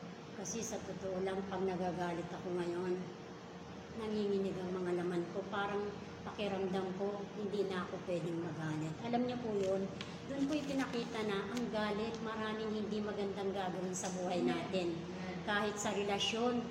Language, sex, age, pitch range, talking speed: English, male, 40-59, 180-215 Hz, 145 wpm